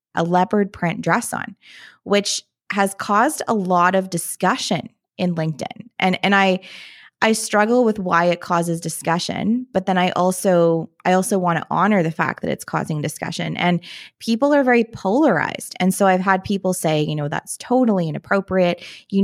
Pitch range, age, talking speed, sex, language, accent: 175-215 Hz, 20-39, 170 wpm, female, English, American